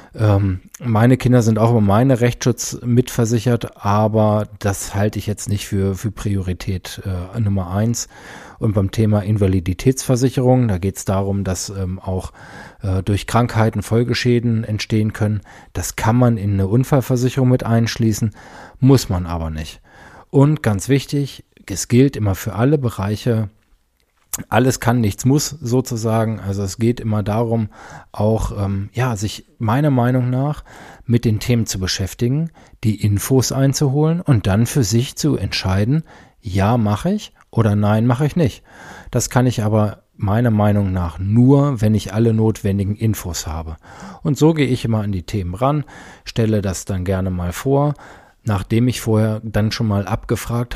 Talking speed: 155 wpm